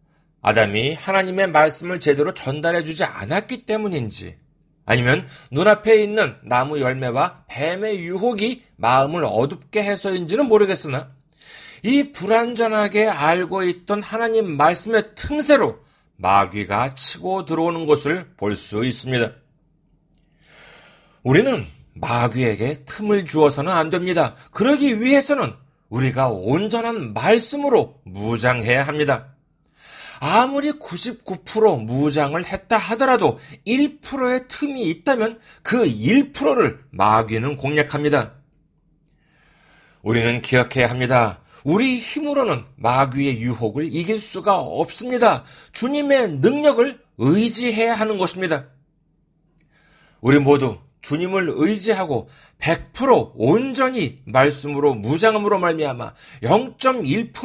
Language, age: Korean, 40-59